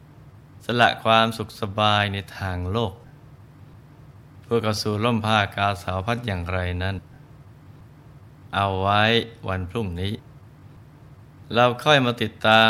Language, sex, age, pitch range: Thai, male, 20-39, 100-130 Hz